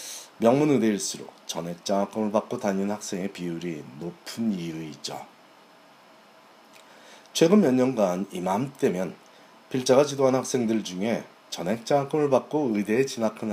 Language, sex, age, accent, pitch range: Korean, male, 40-59, native, 100-130 Hz